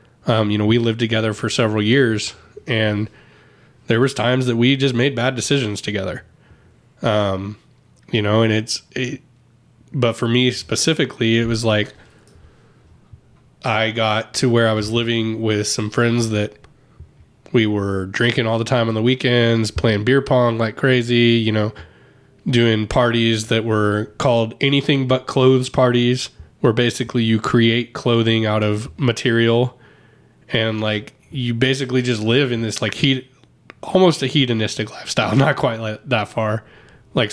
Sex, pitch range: male, 110-125 Hz